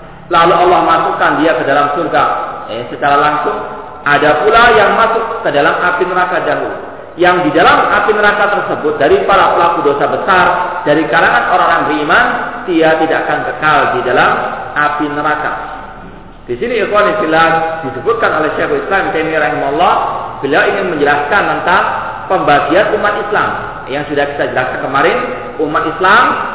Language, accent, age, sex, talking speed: Indonesian, native, 40-59, male, 145 wpm